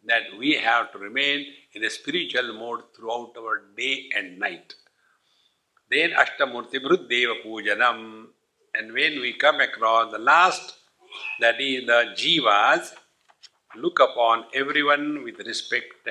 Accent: Indian